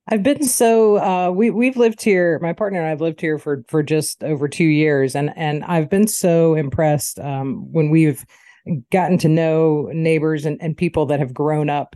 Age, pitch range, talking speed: 40-59, 155-180 Hz, 205 wpm